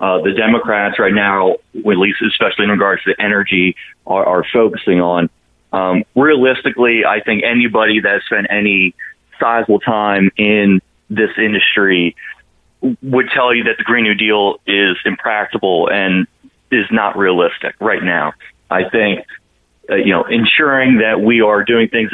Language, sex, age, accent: English, male, 30-49, American